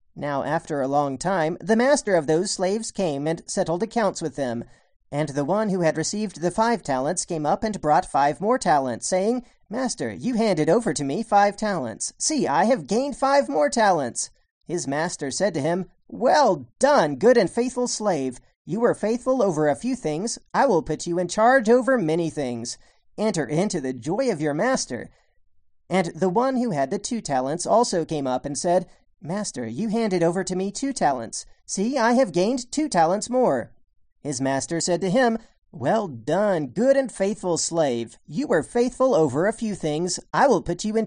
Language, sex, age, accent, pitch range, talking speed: English, male, 40-59, American, 155-235 Hz, 195 wpm